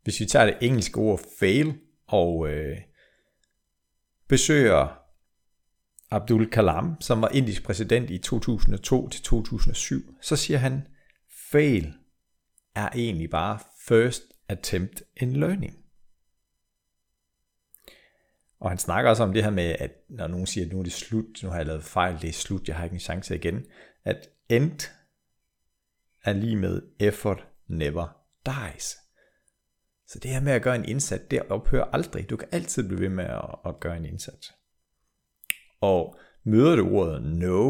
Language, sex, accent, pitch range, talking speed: Danish, male, native, 75-115 Hz, 150 wpm